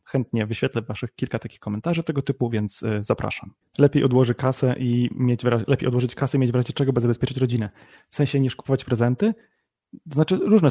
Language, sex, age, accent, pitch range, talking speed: Polish, male, 30-49, native, 115-135 Hz, 195 wpm